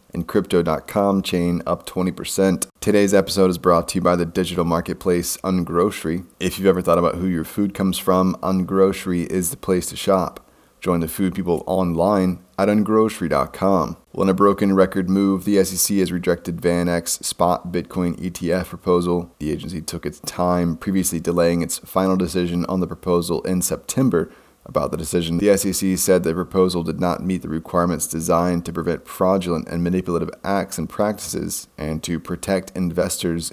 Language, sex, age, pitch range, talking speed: English, male, 30-49, 85-95 Hz, 175 wpm